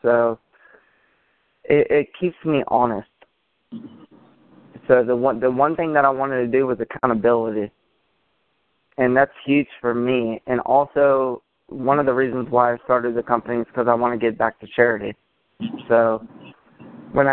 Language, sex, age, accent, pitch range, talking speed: English, male, 20-39, American, 120-140 Hz, 160 wpm